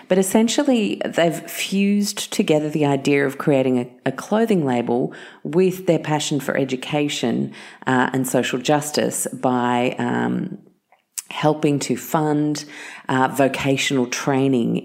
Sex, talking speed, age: female, 120 wpm, 30-49